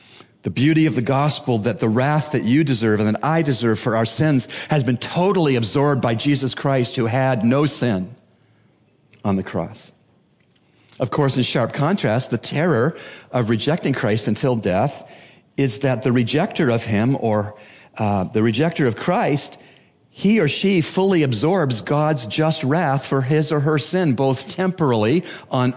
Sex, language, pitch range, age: male, English, 125-155 Hz, 50-69